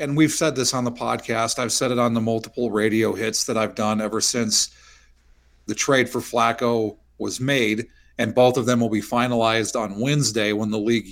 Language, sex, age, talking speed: English, male, 40-59, 205 wpm